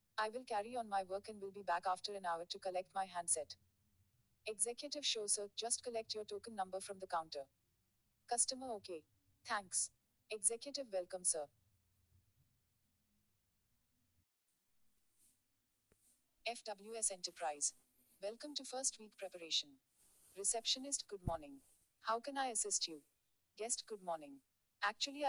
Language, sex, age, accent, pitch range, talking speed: Bengali, female, 40-59, native, 145-225 Hz, 125 wpm